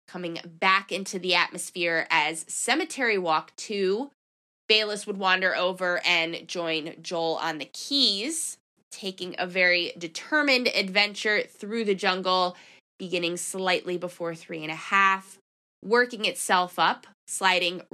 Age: 20-39